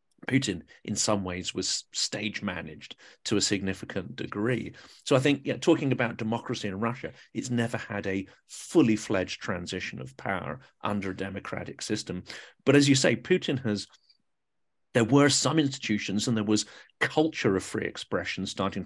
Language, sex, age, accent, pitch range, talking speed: English, male, 40-59, British, 100-125 Hz, 160 wpm